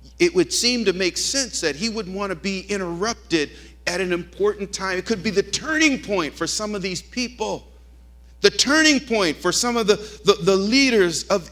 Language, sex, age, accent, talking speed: English, male, 50-69, American, 205 wpm